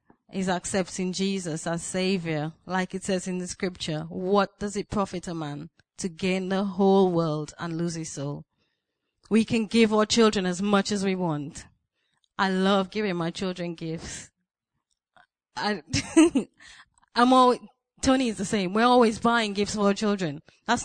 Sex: female